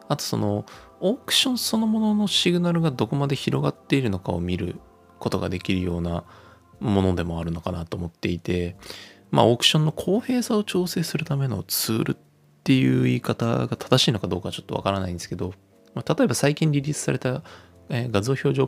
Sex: male